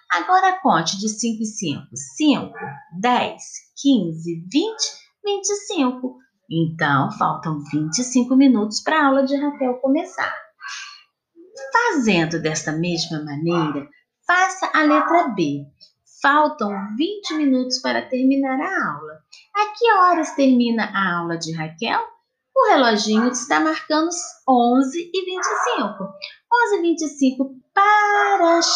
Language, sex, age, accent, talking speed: Portuguese, female, 30-49, Brazilian, 110 wpm